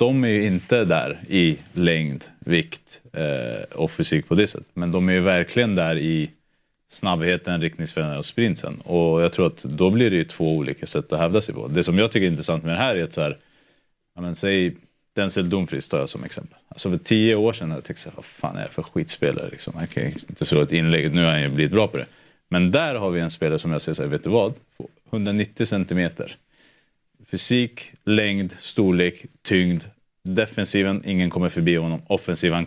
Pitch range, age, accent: 80-100 Hz, 30-49, Norwegian